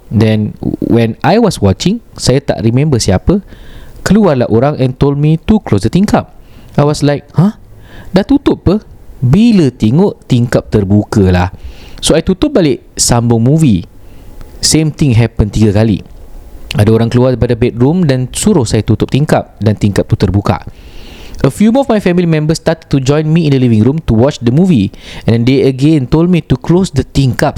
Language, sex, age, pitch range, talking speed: Malay, male, 20-39, 110-170 Hz, 185 wpm